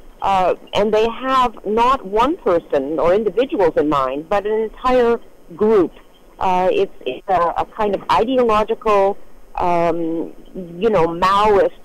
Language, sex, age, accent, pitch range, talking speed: English, female, 50-69, American, 190-250 Hz, 135 wpm